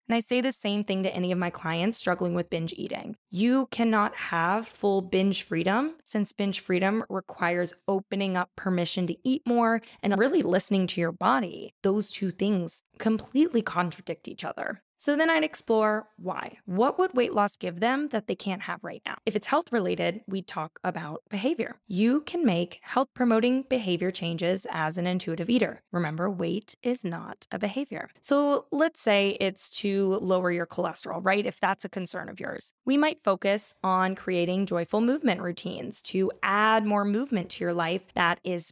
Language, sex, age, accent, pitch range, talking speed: English, female, 20-39, American, 180-230 Hz, 180 wpm